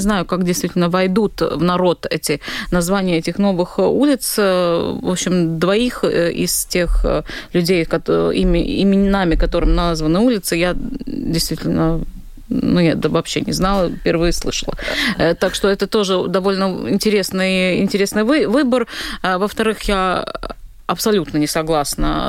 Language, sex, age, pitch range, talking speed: Russian, female, 20-39, 170-210 Hz, 115 wpm